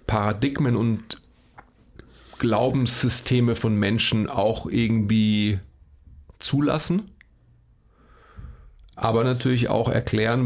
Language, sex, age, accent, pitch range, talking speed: German, male, 40-59, German, 110-130 Hz, 70 wpm